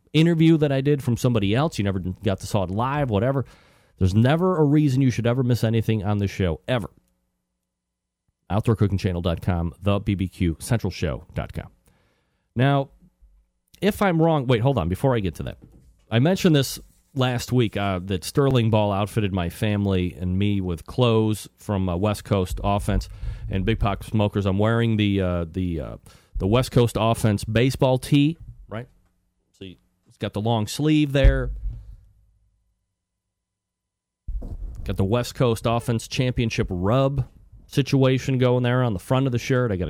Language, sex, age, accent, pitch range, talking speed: English, male, 40-59, American, 95-130 Hz, 155 wpm